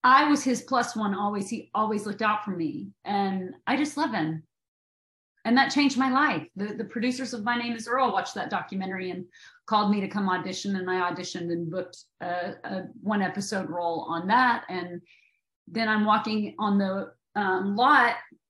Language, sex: English, female